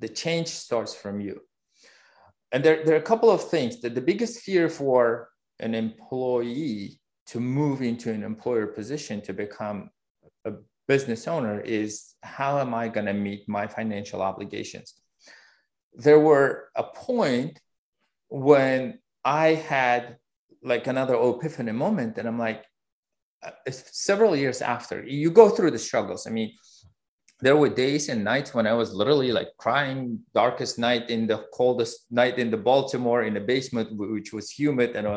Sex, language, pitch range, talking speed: male, English, 110-150 Hz, 160 wpm